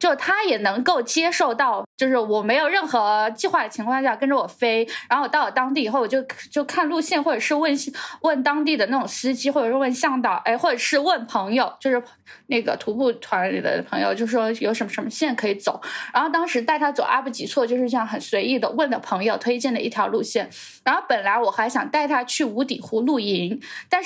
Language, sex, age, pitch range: Chinese, female, 10-29, 230-295 Hz